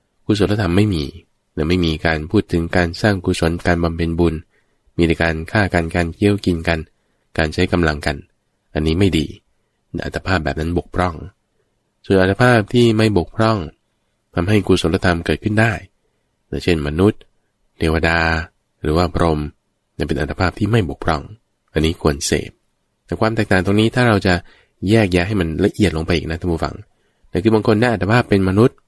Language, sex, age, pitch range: English, male, 20-39, 80-100 Hz